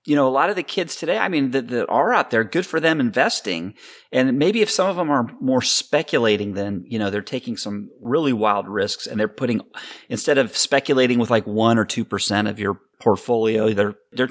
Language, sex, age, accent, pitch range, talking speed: English, male, 30-49, American, 115-150 Hz, 220 wpm